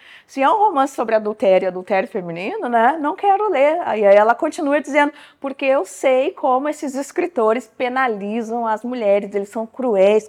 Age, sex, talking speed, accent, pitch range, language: 20-39, female, 170 wpm, Brazilian, 205-270 Hz, Portuguese